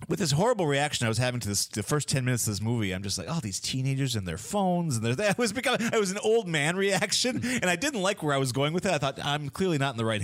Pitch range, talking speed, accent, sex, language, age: 110-155 Hz, 310 wpm, American, male, English, 30-49